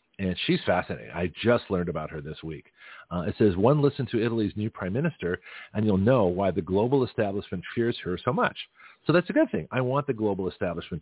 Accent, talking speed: American, 225 wpm